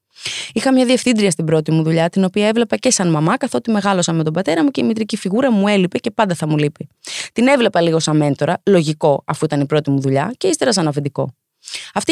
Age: 20-39